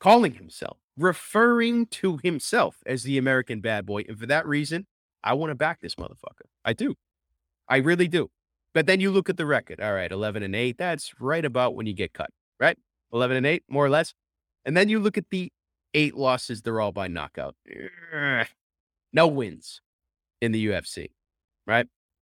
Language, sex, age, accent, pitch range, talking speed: English, male, 30-49, American, 100-140 Hz, 185 wpm